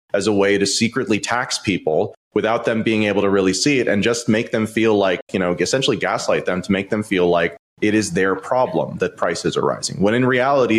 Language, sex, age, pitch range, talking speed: English, male, 30-49, 100-120 Hz, 235 wpm